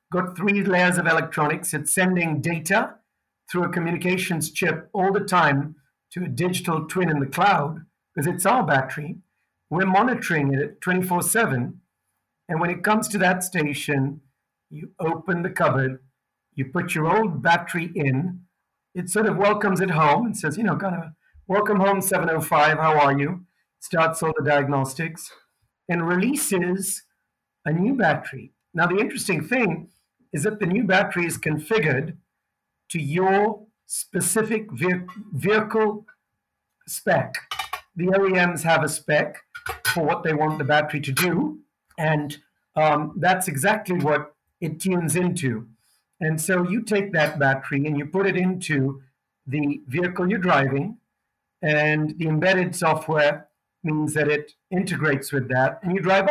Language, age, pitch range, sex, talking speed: English, 50-69, 150-195 Hz, male, 150 wpm